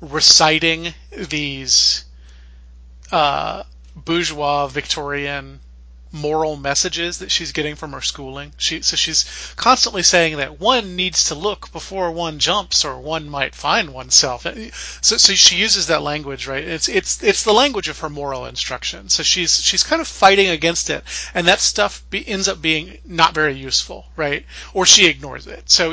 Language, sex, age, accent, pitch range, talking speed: English, male, 30-49, American, 130-175 Hz, 165 wpm